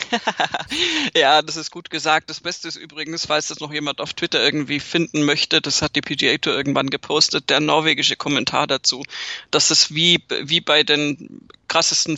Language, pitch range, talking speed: German, 150-180 Hz, 175 wpm